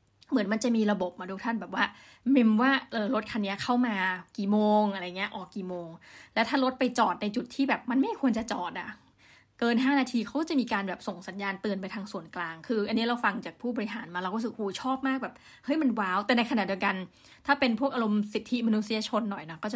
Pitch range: 200-245 Hz